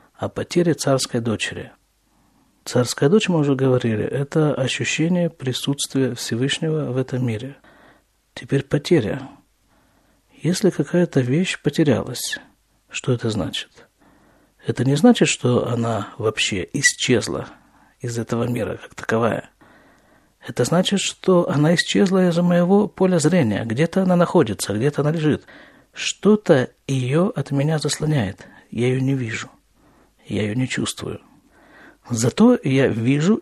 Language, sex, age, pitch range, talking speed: Russian, male, 50-69, 125-175 Hz, 120 wpm